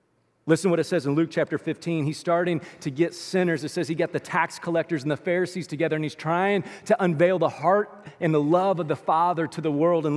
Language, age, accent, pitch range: English, 40-59, American, 170-250 Hz